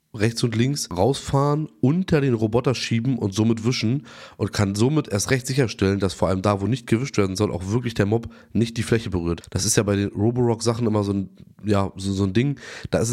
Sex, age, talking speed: male, 20-39, 215 wpm